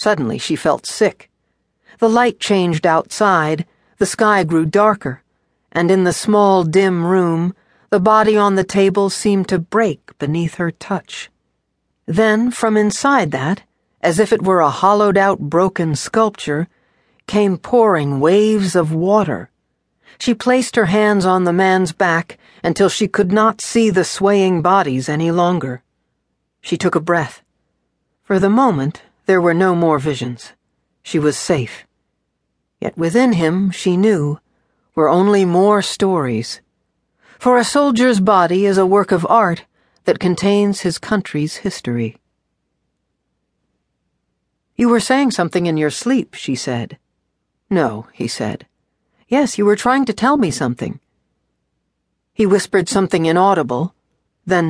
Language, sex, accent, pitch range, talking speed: English, female, American, 165-210 Hz, 140 wpm